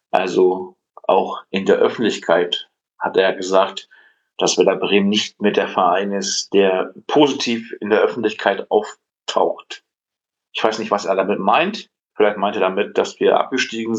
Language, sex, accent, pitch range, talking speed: German, male, German, 100-140 Hz, 160 wpm